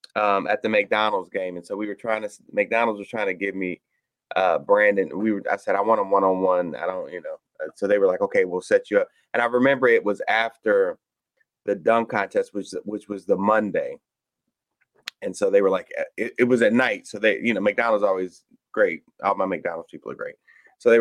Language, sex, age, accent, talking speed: English, male, 30-49, American, 225 wpm